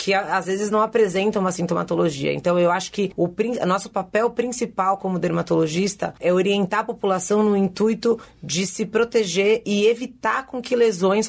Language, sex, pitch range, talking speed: Portuguese, female, 175-215 Hz, 170 wpm